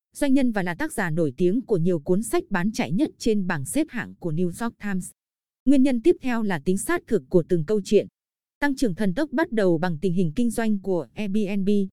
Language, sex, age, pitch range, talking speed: Vietnamese, female, 20-39, 185-240 Hz, 240 wpm